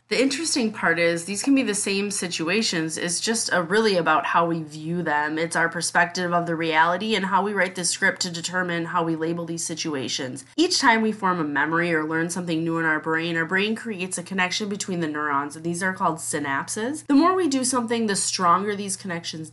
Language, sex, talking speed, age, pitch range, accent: English, female, 225 wpm, 20-39, 155-200 Hz, American